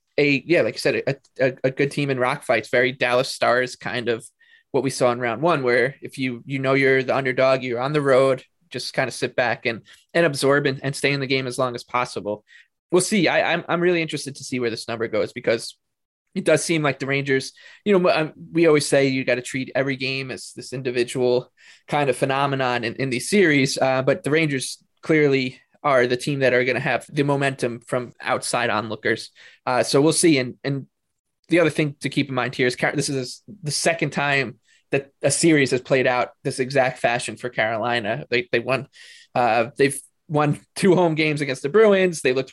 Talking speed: 225 wpm